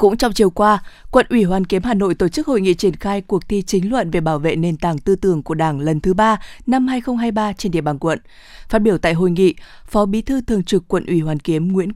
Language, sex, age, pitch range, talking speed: Vietnamese, female, 20-39, 170-225 Hz, 265 wpm